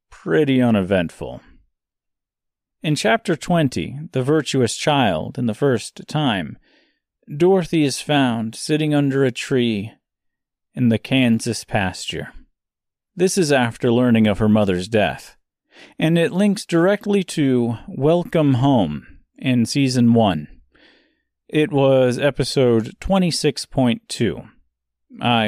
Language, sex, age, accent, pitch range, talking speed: English, male, 40-59, American, 110-160 Hz, 105 wpm